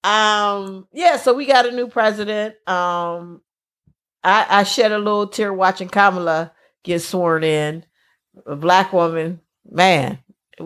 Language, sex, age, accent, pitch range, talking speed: English, female, 40-59, American, 165-235 Hz, 140 wpm